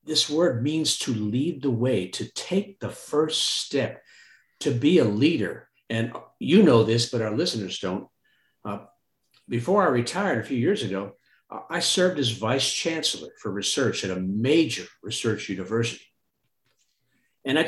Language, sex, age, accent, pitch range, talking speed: English, male, 50-69, American, 110-165 Hz, 155 wpm